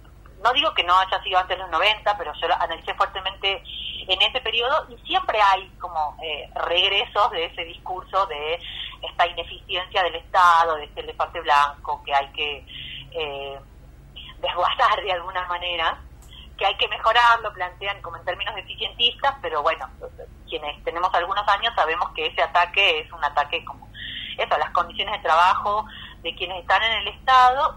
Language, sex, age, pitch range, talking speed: Spanish, female, 30-49, 165-210 Hz, 170 wpm